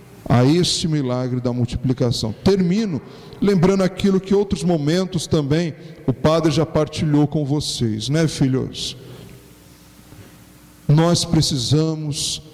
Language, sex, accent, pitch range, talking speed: Portuguese, male, Brazilian, 140-170 Hz, 105 wpm